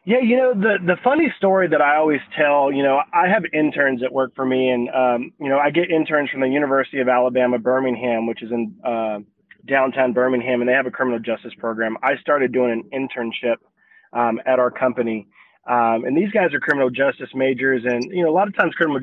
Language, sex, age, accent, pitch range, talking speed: English, male, 20-39, American, 125-160 Hz, 225 wpm